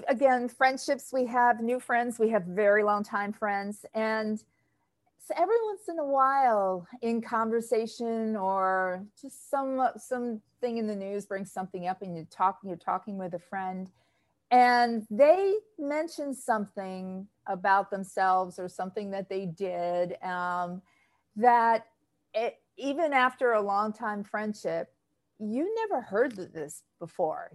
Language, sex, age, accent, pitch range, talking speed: English, female, 40-59, American, 190-255 Hz, 140 wpm